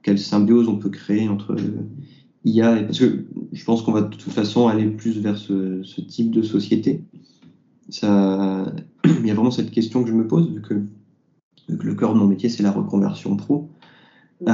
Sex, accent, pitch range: male, French, 100-120 Hz